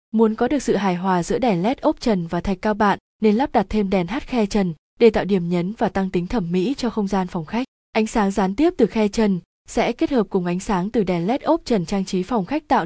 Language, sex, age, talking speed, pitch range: Vietnamese, female, 20-39, 280 wpm, 190-235 Hz